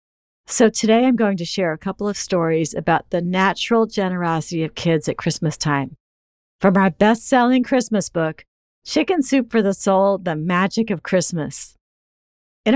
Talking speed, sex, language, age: 160 wpm, female, English, 50-69